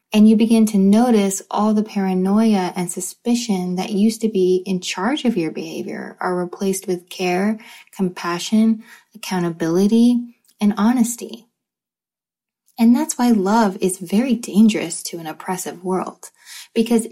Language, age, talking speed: English, 20-39, 135 wpm